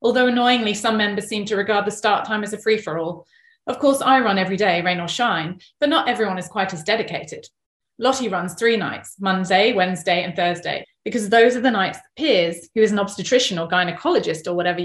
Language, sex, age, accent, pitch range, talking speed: English, female, 30-49, British, 180-220 Hz, 210 wpm